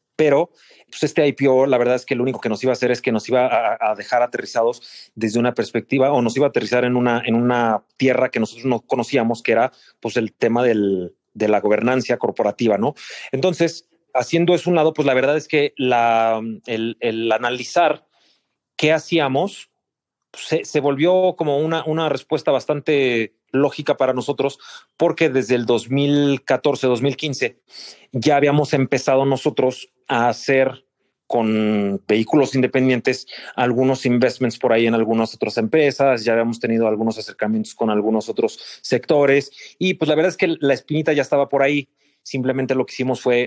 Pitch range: 115-140 Hz